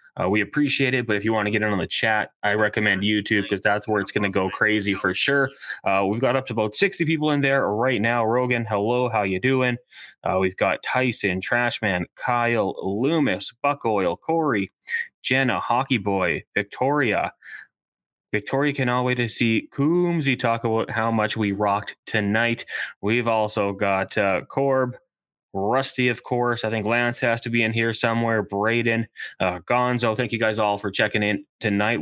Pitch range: 105-125 Hz